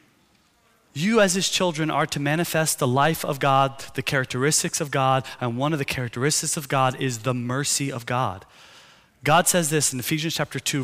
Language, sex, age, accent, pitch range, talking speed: English, male, 30-49, American, 120-155 Hz, 185 wpm